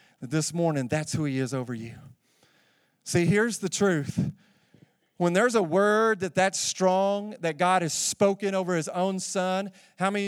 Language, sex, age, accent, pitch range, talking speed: English, male, 40-59, American, 175-230 Hz, 170 wpm